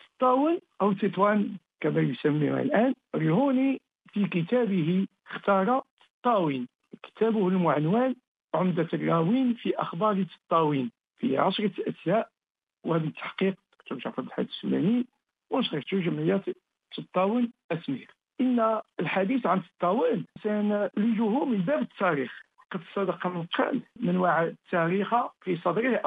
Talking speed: 110 wpm